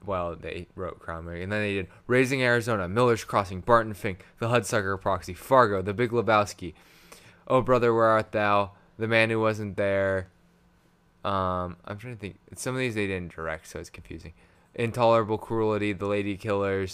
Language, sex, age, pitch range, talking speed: English, male, 20-39, 90-110 Hz, 175 wpm